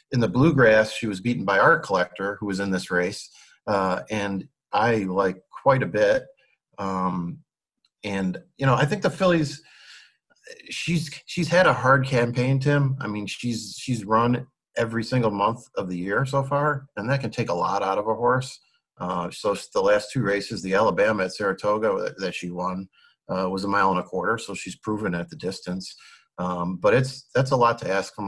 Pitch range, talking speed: 95-140 Hz, 200 wpm